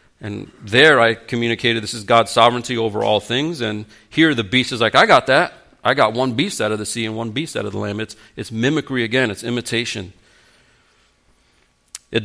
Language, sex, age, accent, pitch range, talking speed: English, male, 40-59, American, 110-135 Hz, 205 wpm